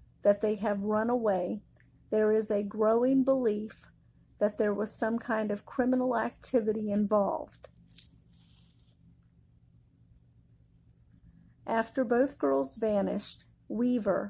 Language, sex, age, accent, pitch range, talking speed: English, female, 50-69, American, 190-235 Hz, 100 wpm